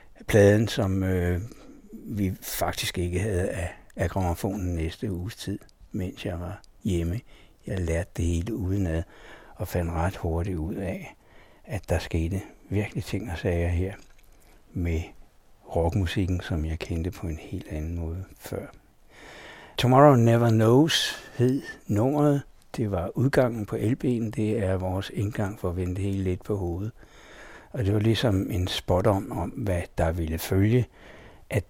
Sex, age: male, 60-79